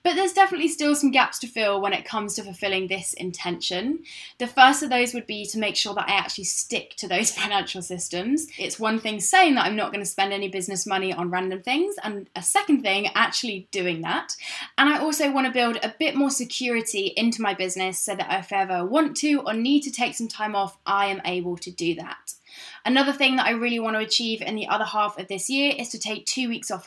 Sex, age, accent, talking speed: female, 10-29, British, 240 wpm